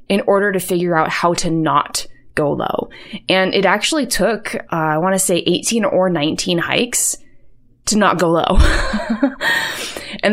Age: 20-39